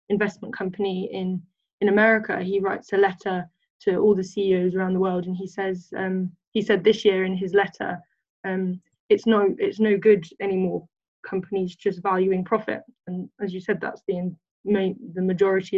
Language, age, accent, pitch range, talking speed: English, 10-29, British, 190-215 Hz, 175 wpm